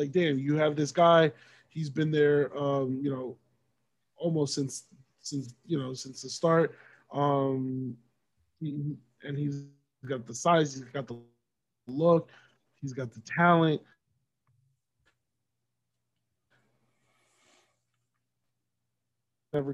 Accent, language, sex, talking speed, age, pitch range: American, English, male, 105 wpm, 20-39, 135-165 Hz